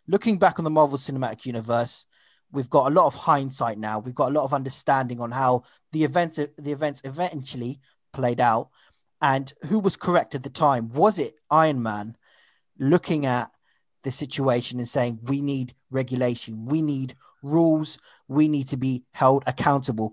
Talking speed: 175 wpm